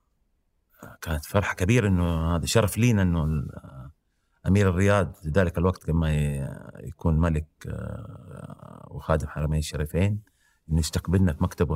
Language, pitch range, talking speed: Arabic, 80-120 Hz, 110 wpm